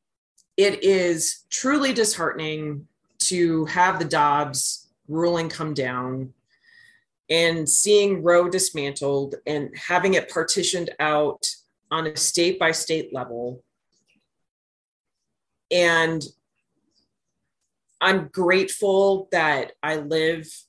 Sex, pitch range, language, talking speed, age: female, 150-190 Hz, English, 95 wpm, 30-49